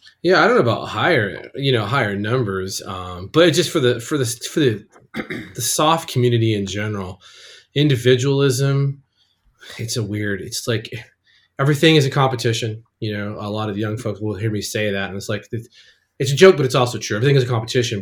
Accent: American